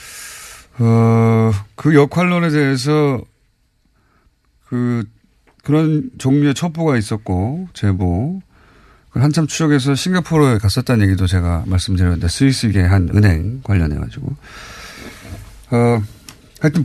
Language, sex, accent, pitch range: Korean, male, native, 100-150 Hz